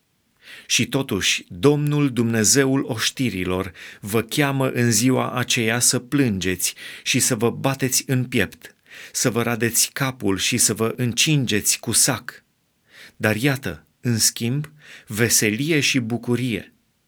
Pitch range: 110-140 Hz